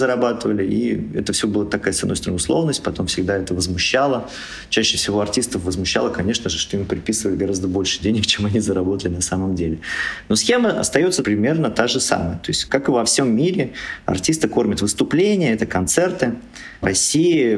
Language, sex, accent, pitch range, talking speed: Russian, male, native, 90-110 Hz, 180 wpm